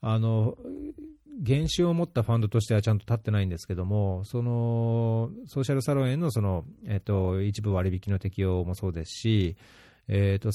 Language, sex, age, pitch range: Japanese, male, 40-59, 95-115 Hz